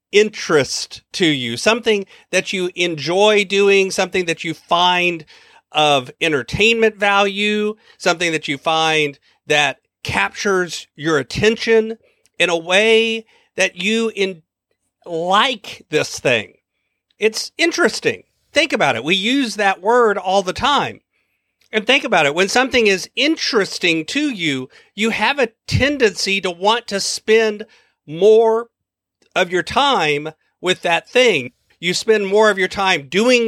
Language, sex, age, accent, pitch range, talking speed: English, male, 40-59, American, 170-215 Hz, 135 wpm